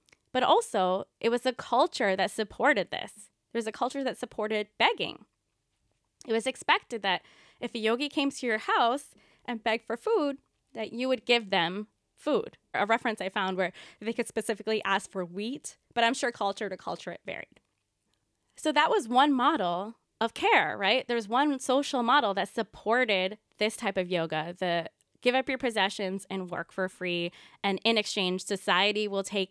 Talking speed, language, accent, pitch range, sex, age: 180 wpm, English, American, 190-245 Hz, female, 20-39